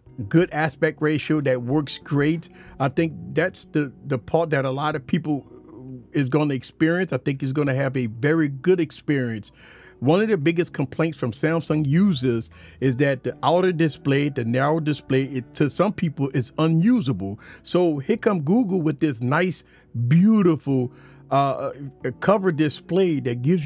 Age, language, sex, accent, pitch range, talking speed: 40-59, English, male, American, 130-165 Hz, 170 wpm